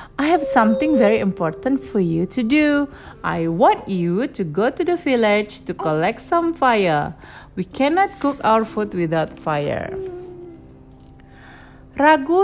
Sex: female